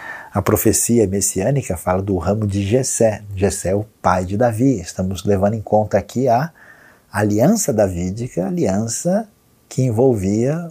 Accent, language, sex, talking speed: Brazilian, Portuguese, male, 145 wpm